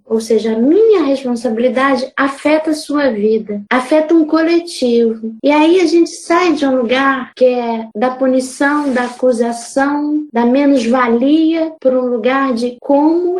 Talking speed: 150 wpm